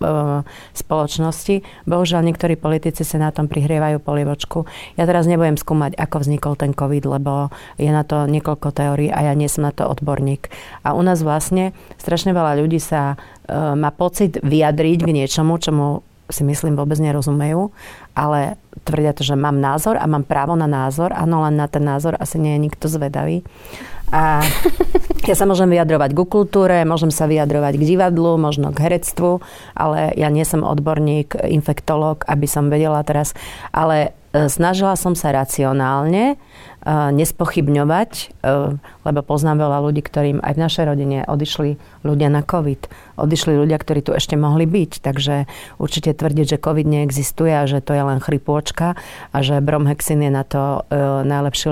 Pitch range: 145-160 Hz